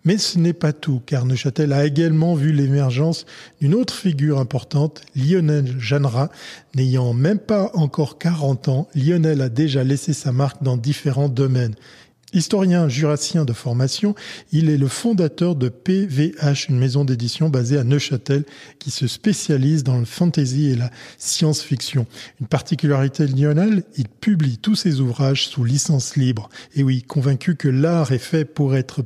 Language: French